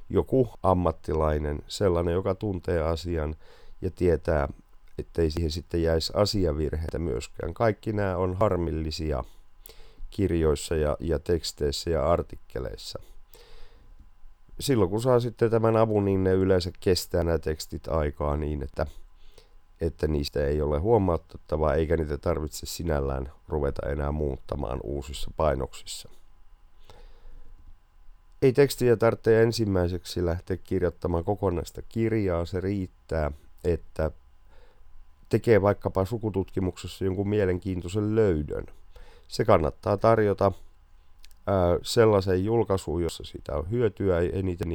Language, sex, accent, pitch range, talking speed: Finnish, male, native, 75-100 Hz, 105 wpm